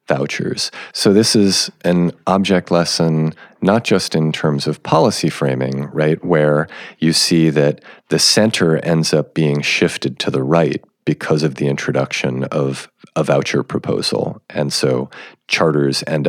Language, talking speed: English, 145 wpm